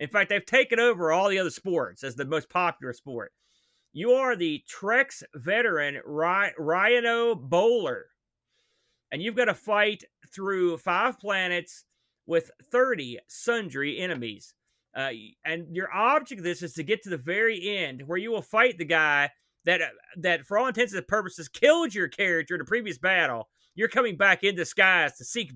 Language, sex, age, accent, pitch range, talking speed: English, male, 30-49, American, 155-210 Hz, 170 wpm